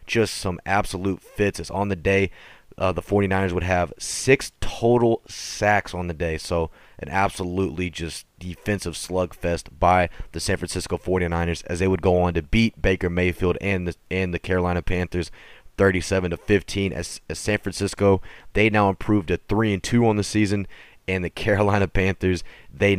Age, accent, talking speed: 30-49, American, 165 wpm